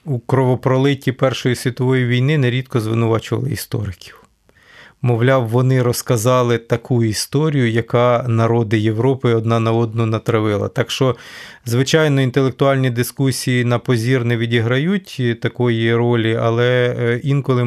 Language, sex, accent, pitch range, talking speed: Ukrainian, male, native, 120-140 Hz, 110 wpm